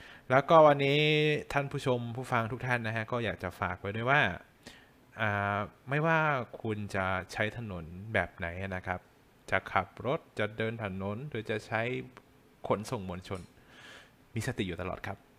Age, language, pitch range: 20-39, Thai, 95-120 Hz